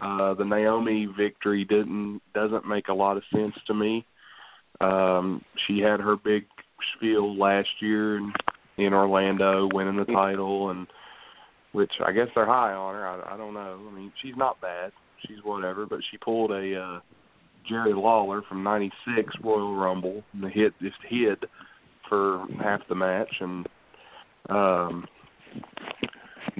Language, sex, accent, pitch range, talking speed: English, male, American, 95-105 Hz, 155 wpm